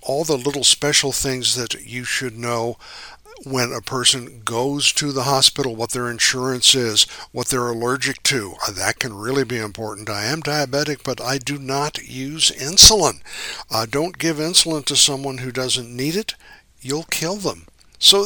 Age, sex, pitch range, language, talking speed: 60-79, male, 115-145 Hz, English, 170 wpm